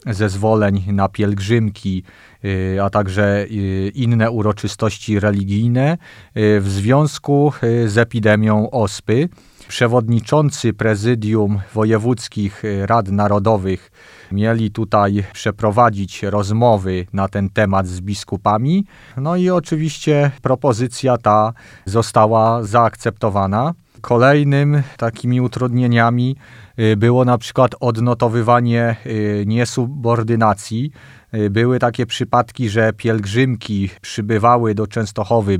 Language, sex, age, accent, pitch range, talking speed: Polish, male, 40-59, native, 105-120 Hz, 85 wpm